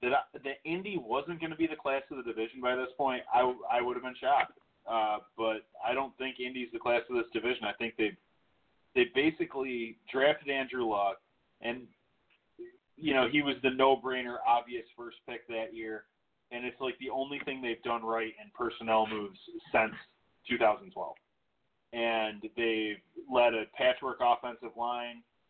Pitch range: 115-135 Hz